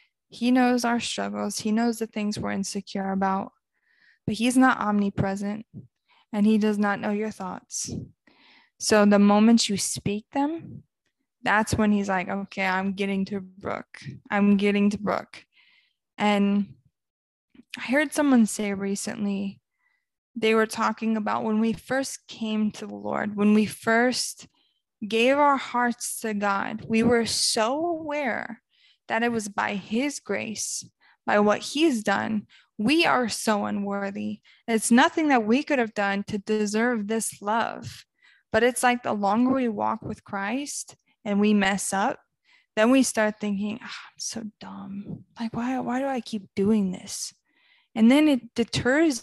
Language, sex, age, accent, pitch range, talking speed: English, female, 20-39, American, 205-245 Hz, 155 wpm